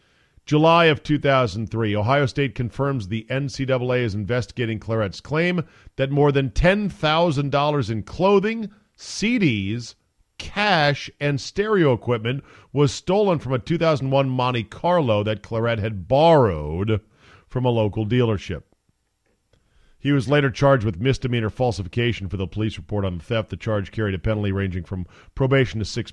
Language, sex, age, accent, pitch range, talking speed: English, male, 50-69, American, 100-135 Hz, 140 wpm